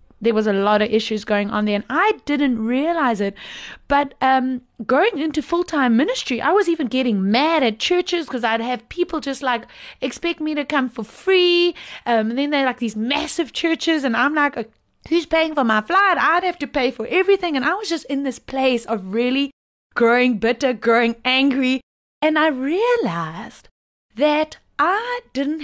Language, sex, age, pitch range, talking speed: English, female, 30-49, 230-310 Hz, 185 wpm